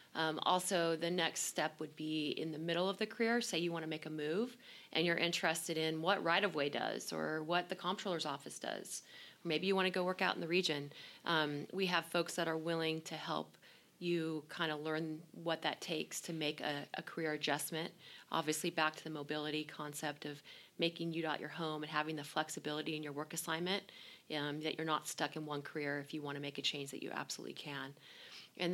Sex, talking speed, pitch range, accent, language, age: female, 215 wpm, 155-175 Hz, American, English, 30-49